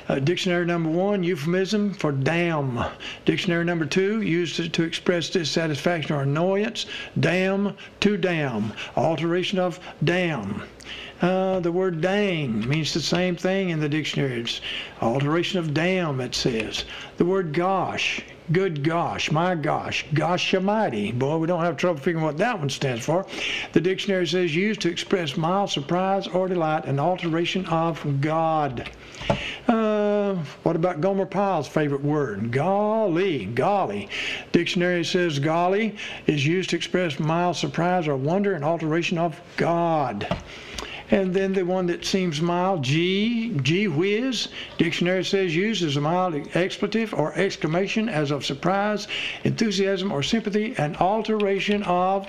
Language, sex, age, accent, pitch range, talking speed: English, male, 60-79, American, 160-195 Hz, 145 wpm